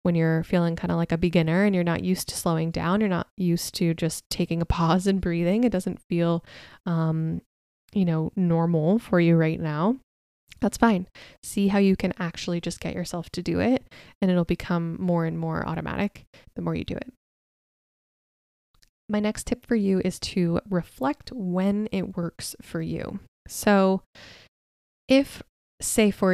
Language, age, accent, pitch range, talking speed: English, 20-39, American, 170-195 Hz, 180 wpm